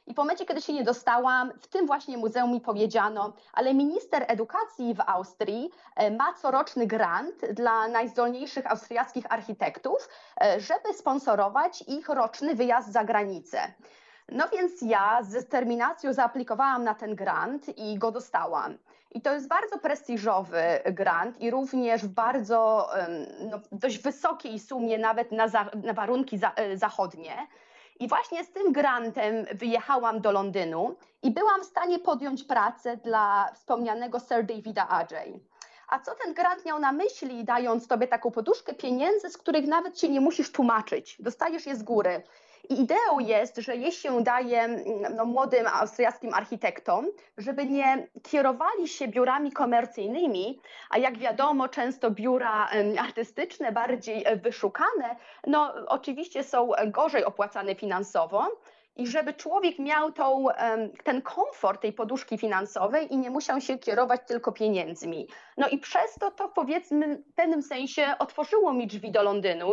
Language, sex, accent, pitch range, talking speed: Polish, female, native, 225-295 Hz, 145 wpm